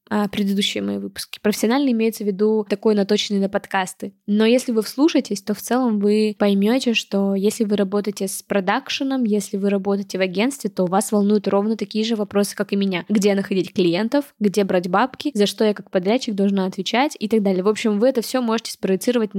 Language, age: Russian, 20-39